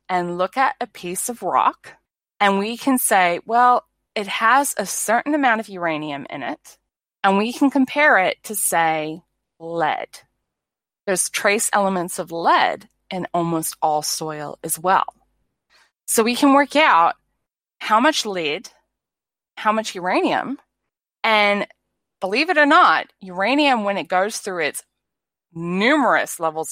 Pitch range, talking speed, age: 165-240 Hz, 145 wpm, 20-39